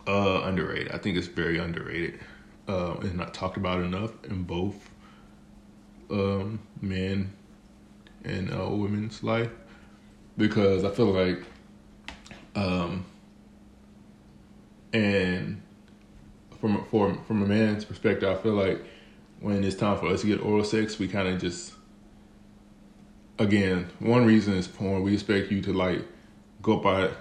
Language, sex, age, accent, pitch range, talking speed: English, male, 20-39, American, 95-105 Hz, 135 wpm